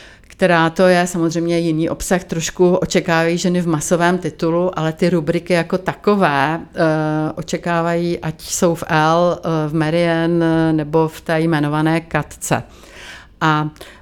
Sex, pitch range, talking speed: female, 165-185 Hz, 130 wpm